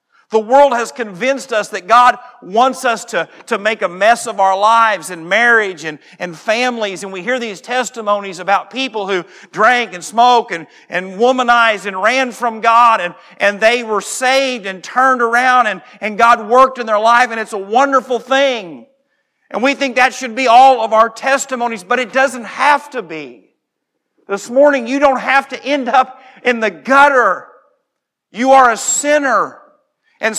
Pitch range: 185-255 Hz